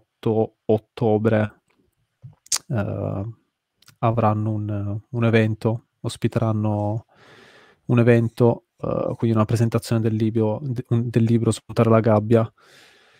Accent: native